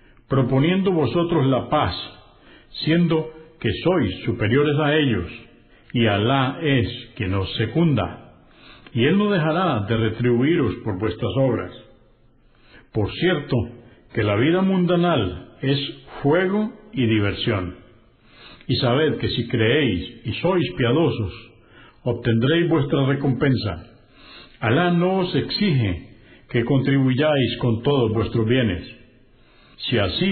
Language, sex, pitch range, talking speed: Spanish, male, 115-145 Hz, 115 wpm